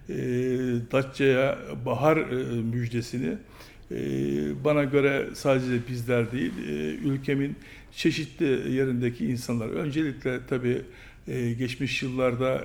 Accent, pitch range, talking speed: native, 120-140 Hz, 100 wpm